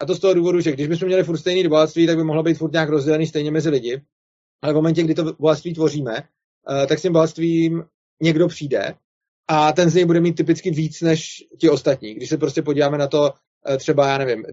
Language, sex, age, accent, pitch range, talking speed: Czech, male, 30-49, native, 135-165 Hz, 225 wpm